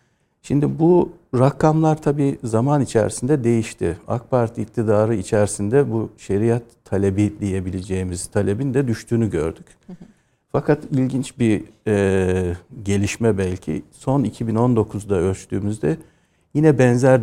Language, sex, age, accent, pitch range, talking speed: Turkish, male, 60-79, native, 105-130 Hz, 100 wpm